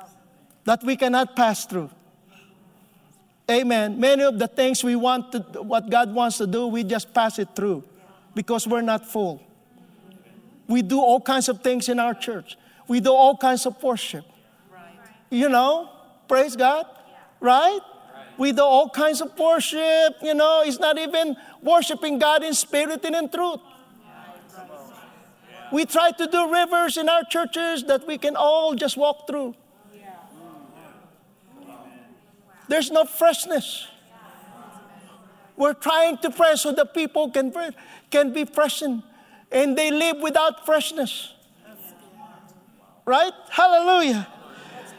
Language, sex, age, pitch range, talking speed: English, male, 50-69, 210-315 Hz, 135 wpm